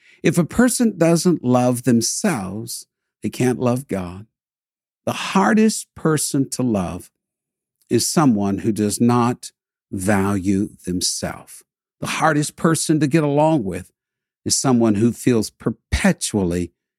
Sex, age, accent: male, 60-79, American